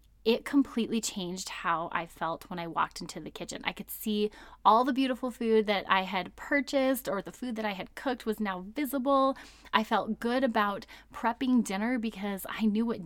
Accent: American